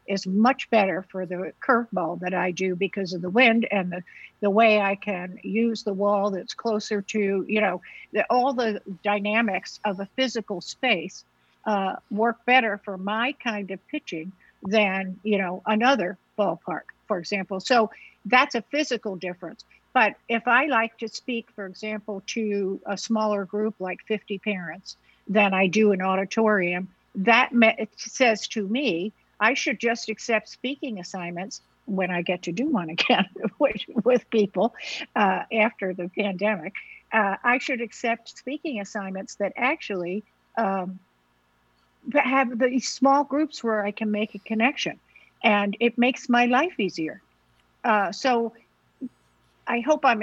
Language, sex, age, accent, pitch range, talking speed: English, female, 60-79, American, 195-235 Hz, 155 wpm